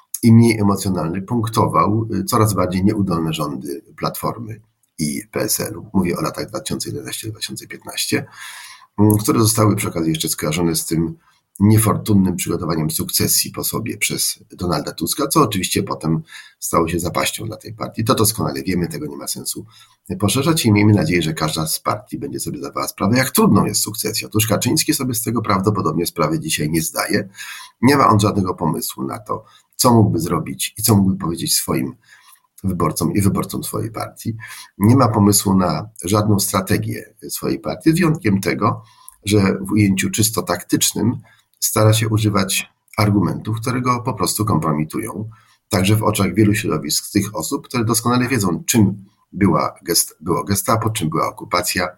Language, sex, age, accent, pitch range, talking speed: Polish, male, 40-59, native, 95-110 Hz, 155 wpm